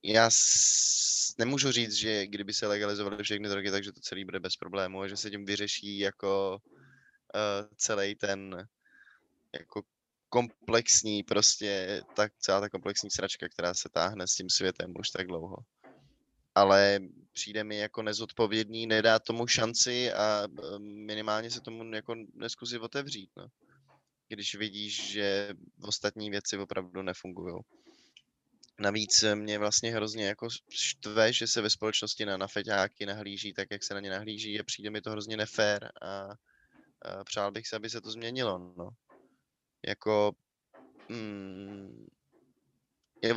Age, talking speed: 20-39, 140 wpm